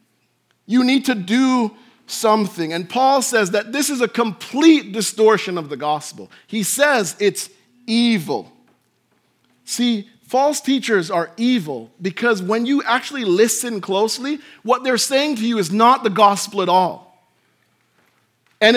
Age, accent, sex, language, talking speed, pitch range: 40-59, American, male, English, 140 wpm, 185-255 Hz